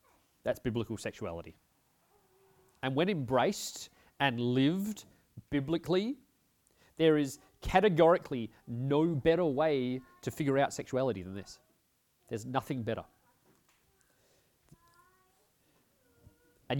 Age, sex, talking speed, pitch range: 30-49, male, 90 wpm, 110-155 Hz